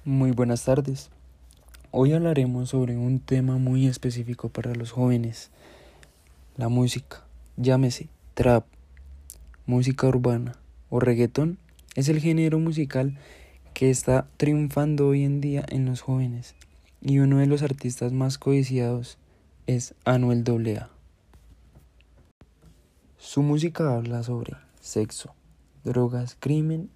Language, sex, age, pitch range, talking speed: Spanish, male, 20-39, 105-135 Hz, 115 wpm